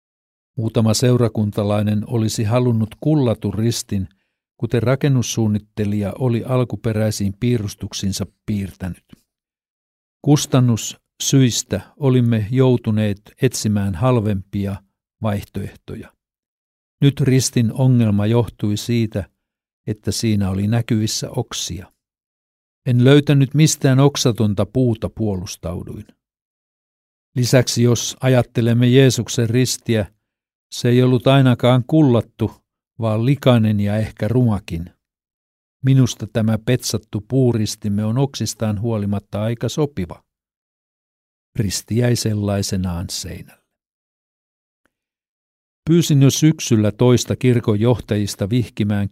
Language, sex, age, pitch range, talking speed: Finnish, male, 60-79, 105-125 Hz, 85 wpm